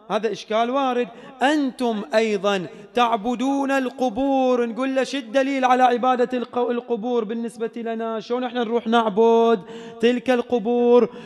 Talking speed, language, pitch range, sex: 110 wpm, English, 165-240 Hz, male